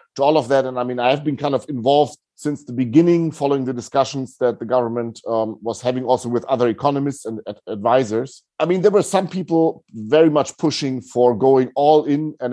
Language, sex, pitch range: English, male, 120-145 Hz